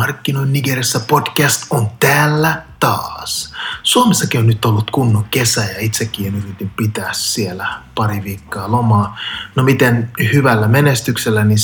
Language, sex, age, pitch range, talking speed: Finnish, male, 30-49, 105-125 Hz, 130 wpm